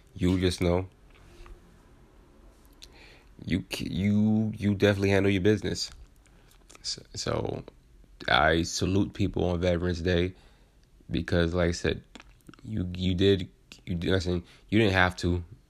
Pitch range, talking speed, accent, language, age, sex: 85-95 Hz, 120 wpm, American, English, 20-39, male